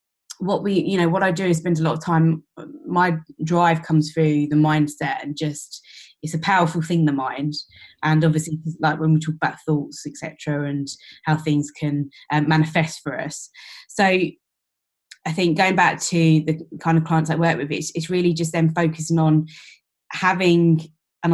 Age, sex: 20-39, female